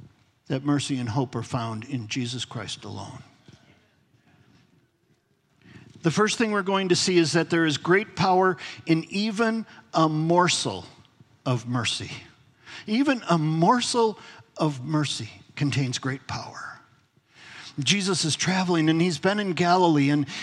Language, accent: English, American